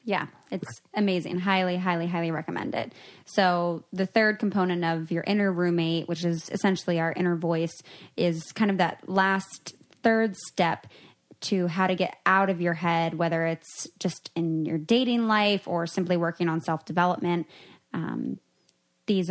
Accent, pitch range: American, 170-200 Hz